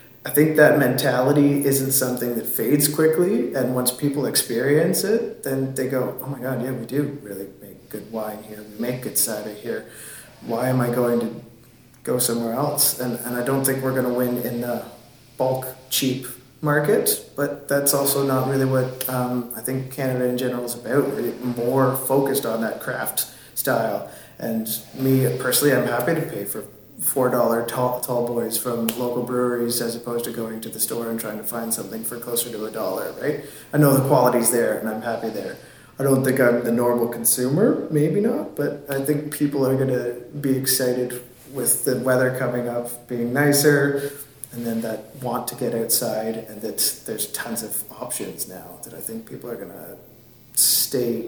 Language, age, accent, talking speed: English, 20-39, American, 195 wpm